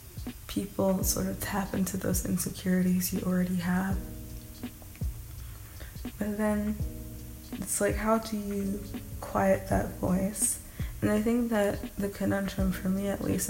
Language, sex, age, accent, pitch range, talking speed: English, female, 20-39, American, 180-200 Hz, 135 wpm